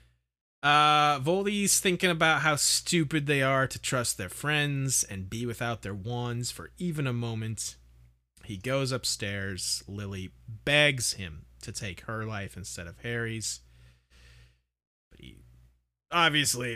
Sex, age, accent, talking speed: male, 30-49, American, 130 wpm